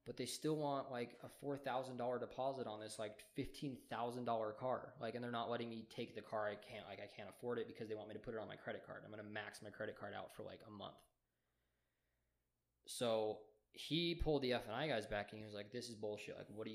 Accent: American